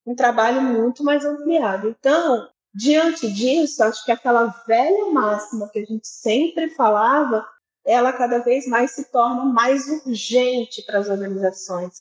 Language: Portuguese